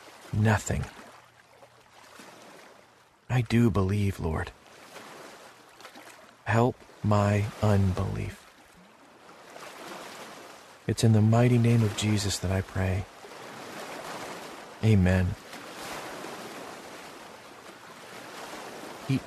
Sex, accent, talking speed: male, American, 60 wpm